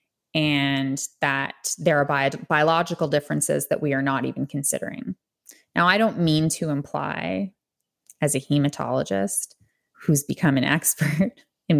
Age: 20-39